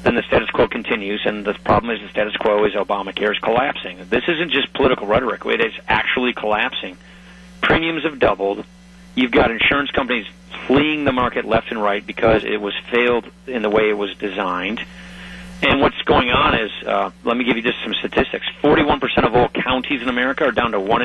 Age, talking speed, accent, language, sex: 40-59, 200 wpm, American, English, male